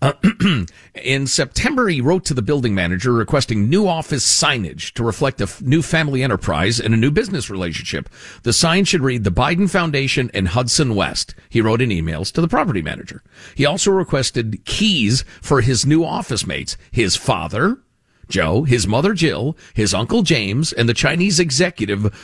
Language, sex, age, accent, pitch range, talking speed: English, male, 50-69, American, 105-160 Hz, 175 wpm